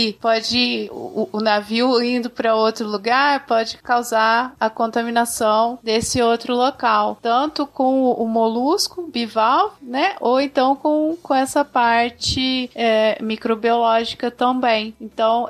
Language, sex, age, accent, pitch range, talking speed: Portuguese, female, 20-39, Brazilian, 215-250 Hz, 130 wpm